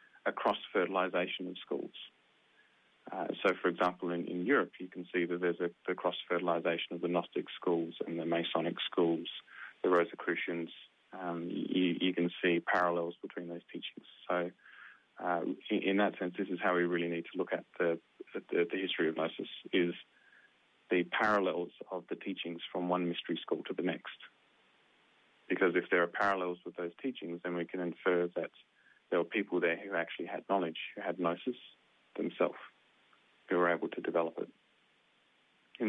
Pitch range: 85-95 Hz